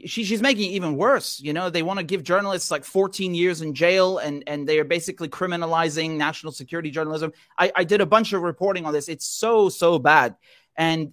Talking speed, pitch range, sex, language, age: 220 wpm, 150-195 Hz, male, English, 30-49